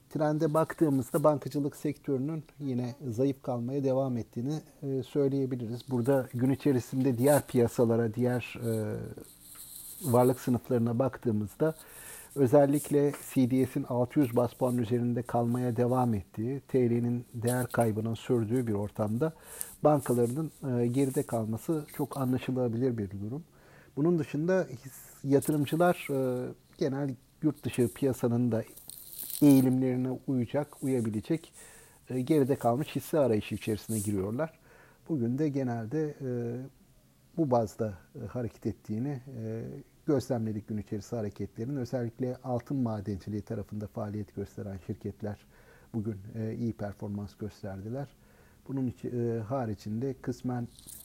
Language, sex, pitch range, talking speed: Turkish, male, 115-140 Hz, 100 wpm